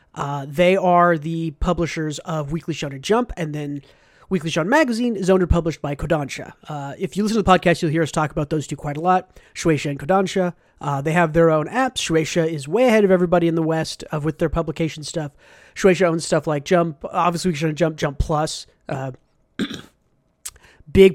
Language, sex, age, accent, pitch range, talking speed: English, male, 30-49, American, 155-190 Hz, 210 wpm